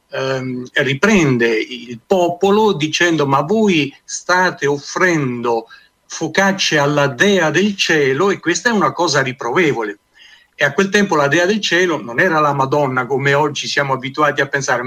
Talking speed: 150 wpm